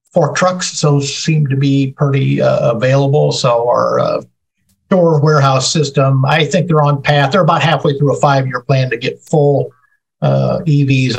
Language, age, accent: English, 50-69, American